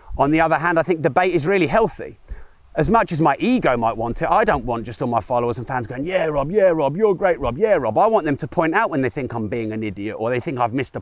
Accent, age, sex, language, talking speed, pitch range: British, 30-49, male, English, 305 wpm, 125-195 Hz